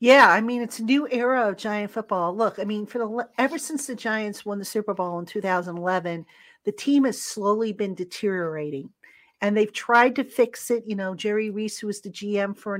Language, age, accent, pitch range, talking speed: English, 50-69, American, 190-220 Hz, 220 wpm